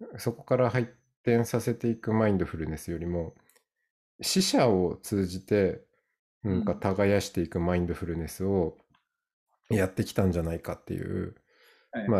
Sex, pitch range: male, 90-125 Hz